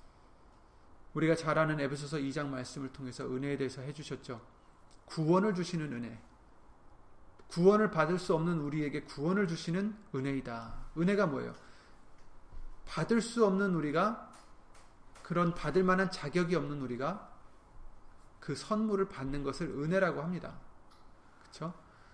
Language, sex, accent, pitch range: Korean, male, native, 130-180 Hz